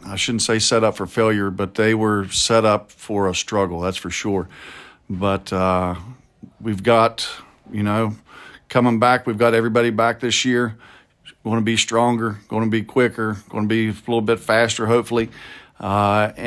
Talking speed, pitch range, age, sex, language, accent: 180 wpm, 105-120 Hz, 50-69, male, English, American